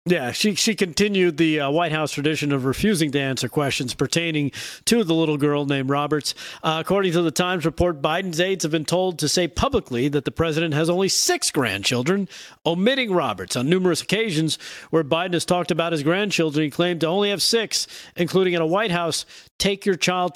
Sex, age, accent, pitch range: male, 40-59, American, 150-190 Hz